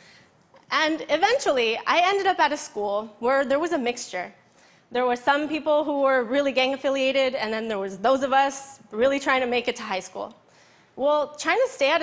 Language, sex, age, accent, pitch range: Chinese, female, 20-39, American, 220-290 Hz